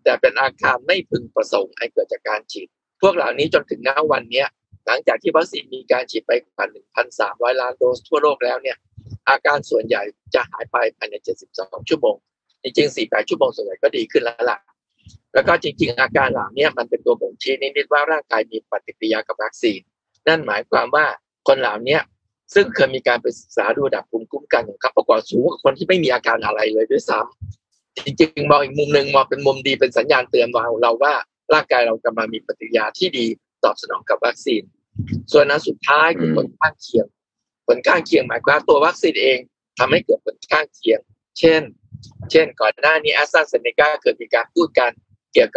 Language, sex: Thai, male